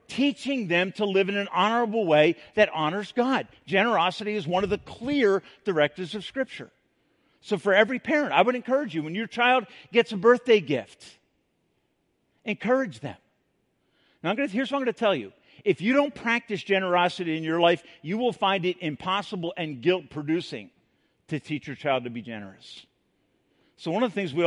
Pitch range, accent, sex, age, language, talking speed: 155-225 Hz, American, male, 50-69, English, 180 wpm